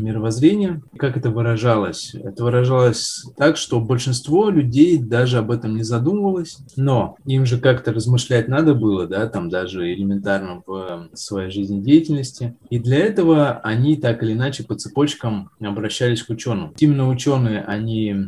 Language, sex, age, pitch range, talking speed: Russian, male, 20-39, 105-130 Hz, 145 wpm